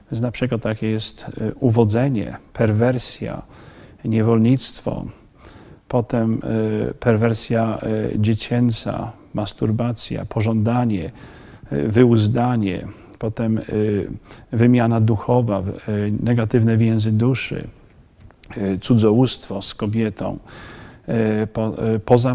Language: Polish